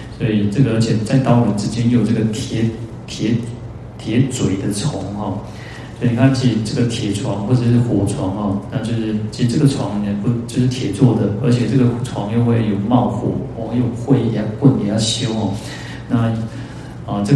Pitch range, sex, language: 110-125 Hz, male, Chinese